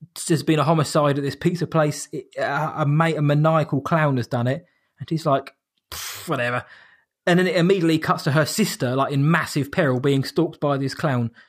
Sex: male